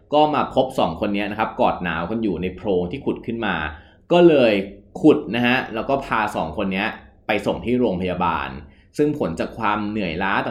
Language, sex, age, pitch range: Thai, male, 20-39, 95-125 Hz